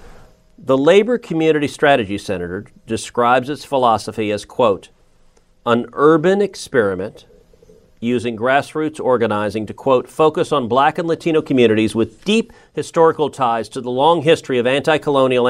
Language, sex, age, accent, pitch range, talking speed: English, male, 40-59, American, 120-160 Hz, 130 wpm